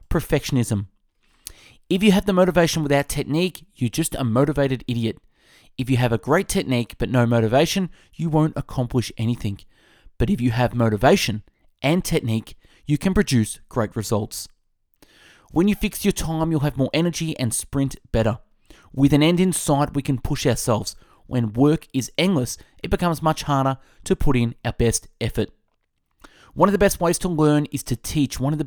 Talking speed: 180 wpm